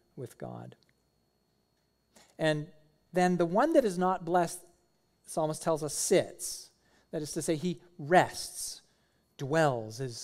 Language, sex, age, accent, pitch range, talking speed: English, male, 40-59, American, 120-165 Hz, 135 wpm